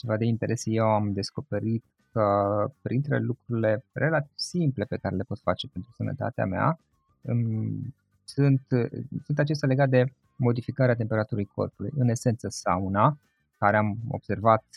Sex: male